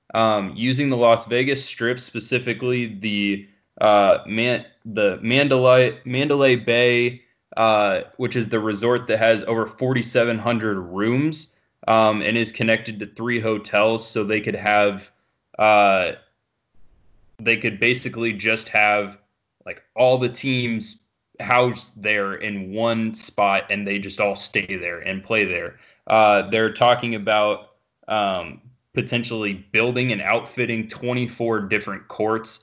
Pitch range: 105-125 Hz